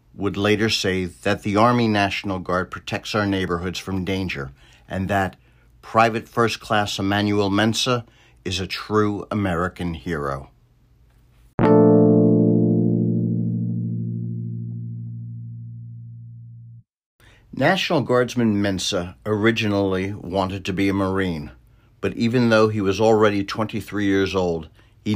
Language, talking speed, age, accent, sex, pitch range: English, 105 wpm, 60-79, American, male, 85-105 Hz